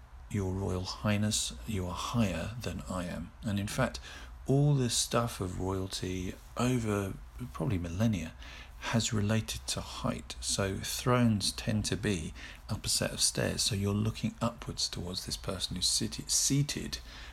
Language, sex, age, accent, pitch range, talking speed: English, male, 40-59, British, 75-110 Hz, 150 wpm